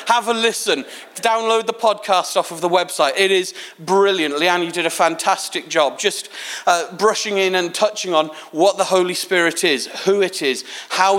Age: 40-59